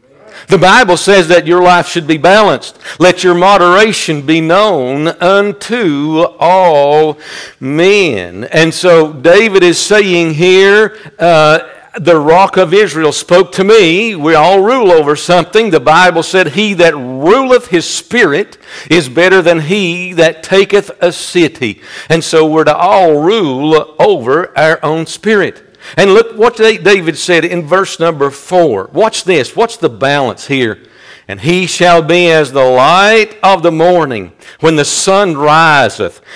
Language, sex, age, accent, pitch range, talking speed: English, male, 60-79, American, 155-195 Hz, 150 wpm